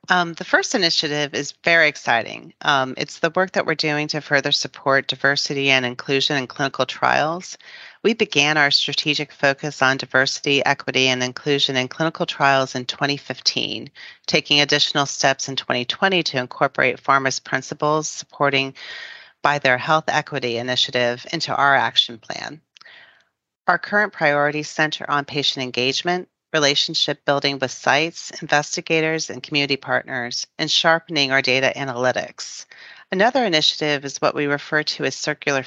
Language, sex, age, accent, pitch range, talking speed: English, female, 40-59, American, 135-165 Hz, 145 wpm